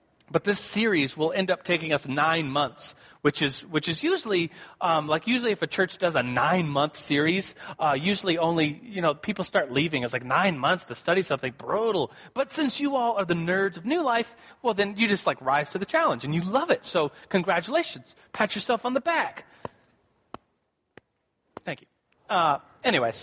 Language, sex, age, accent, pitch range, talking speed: English, male, 30-49, American, 155-215 Hz, 195 wpm